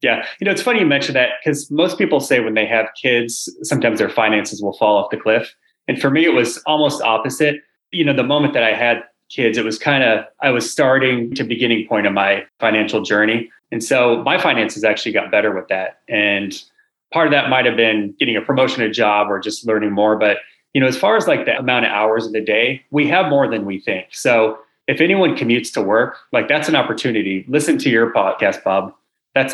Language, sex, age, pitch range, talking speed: English, male, 30-49, 105-130 Hz, 230 wpm